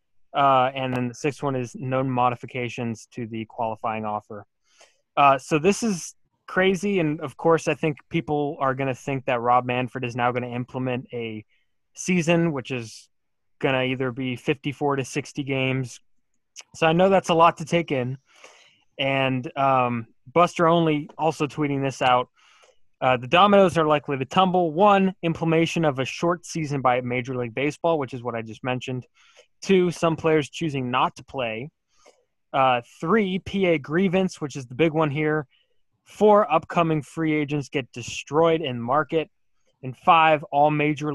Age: 20-39